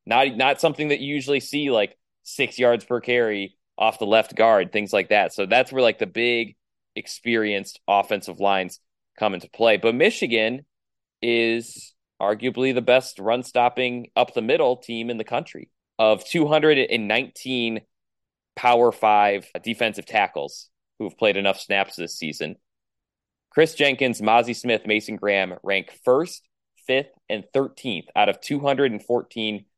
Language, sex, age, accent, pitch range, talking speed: English, male, 20-39, American, 105-130 Hz, 140 wpm